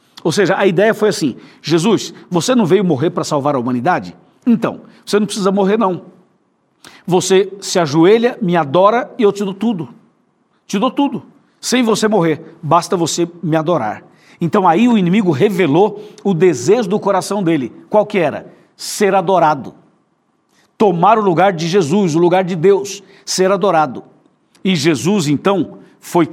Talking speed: 160 wpm